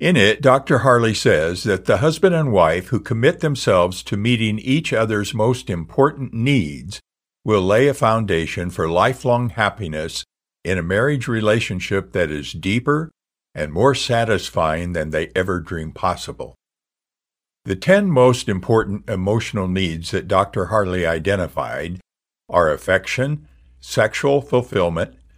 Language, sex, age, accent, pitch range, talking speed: English, male, 60-79, American, 80-120 Hz, 130 wpm